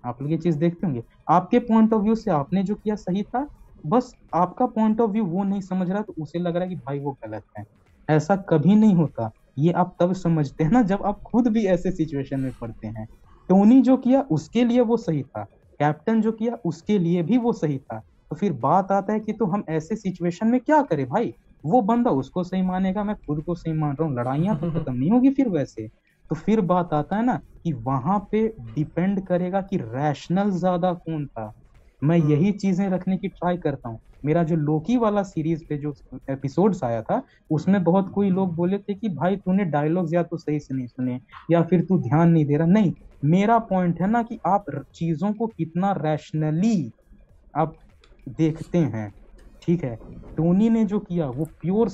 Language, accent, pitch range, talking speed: Hindi, native, 150-200 Hz, 160 wpm